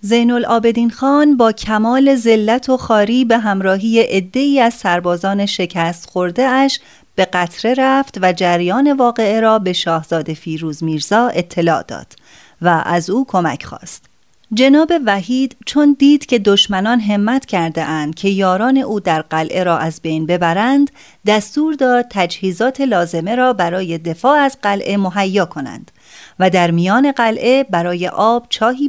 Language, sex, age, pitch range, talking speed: Persian, female, 30-49, 180-255 Hz, 145 wpm